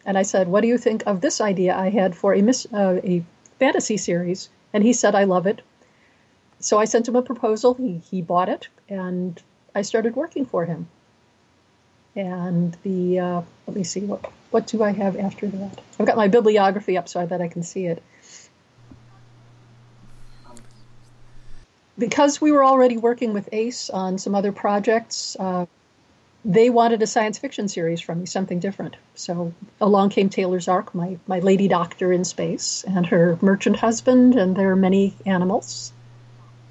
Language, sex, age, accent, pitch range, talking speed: English, female, 40-59, American, 165-220 Hz, 175 wpm